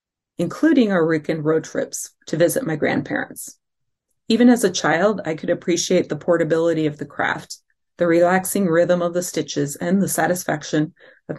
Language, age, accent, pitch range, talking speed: English, 30-49, American, 160-195 Hz, 165 wpm